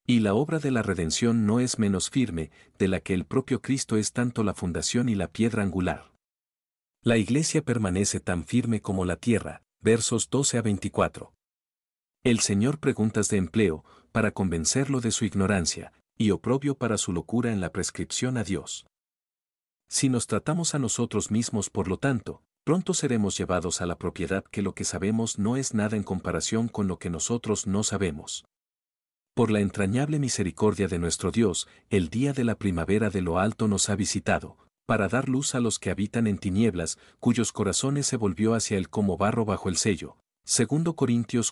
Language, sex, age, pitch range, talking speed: Spanish, male, 50-69, 95-120 Hz, 180 wpm